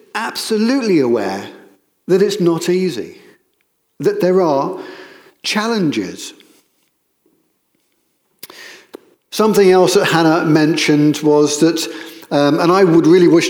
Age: 50-69